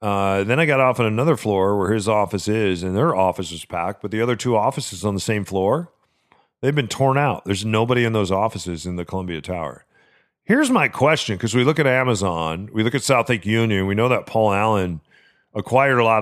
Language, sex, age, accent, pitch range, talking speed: English, male, 40-59, American, 100-125 Hz, 225 wpm